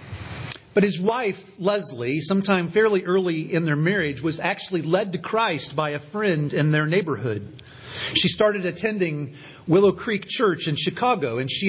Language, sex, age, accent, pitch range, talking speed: English, male, 40-59, American, 135-195 Hz, 160 wpm